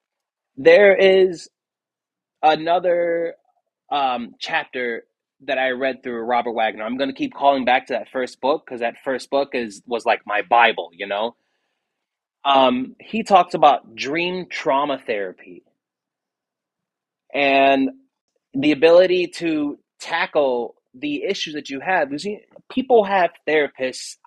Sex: male